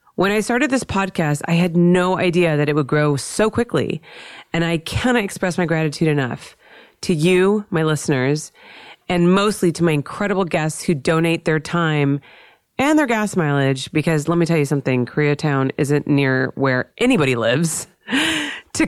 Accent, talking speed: American, 170 wpm